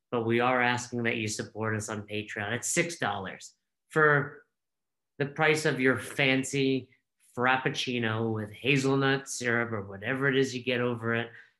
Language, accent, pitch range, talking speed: English, American, 120-145 Hz, 155 wpm